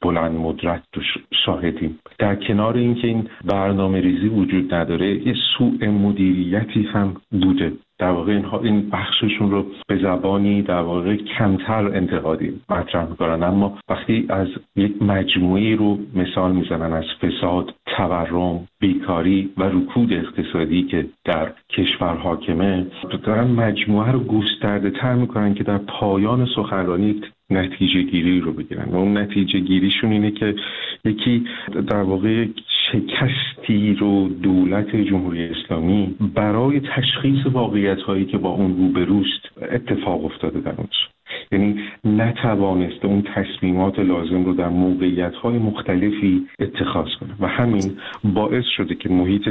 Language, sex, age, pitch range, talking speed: Persian, male, 50-69, 90-105 Hz, 135 wpm